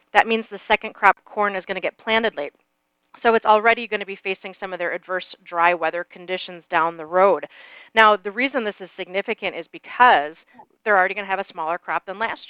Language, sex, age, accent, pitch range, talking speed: English, female, 30-49, American, 175-225 Hz, 225 wpm